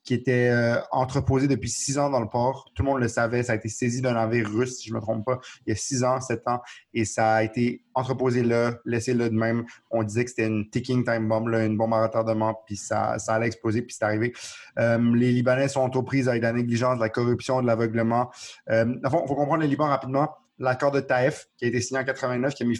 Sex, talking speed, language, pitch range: male, 255 wpm, French, 110-125 Hz